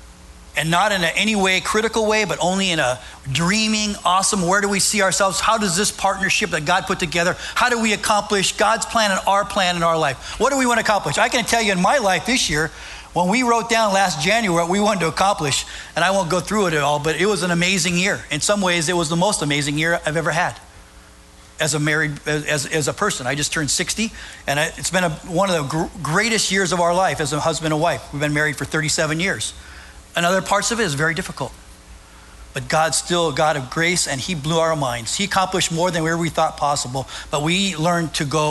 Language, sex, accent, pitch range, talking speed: English, male, American, 150-195 Hz, 240 wpm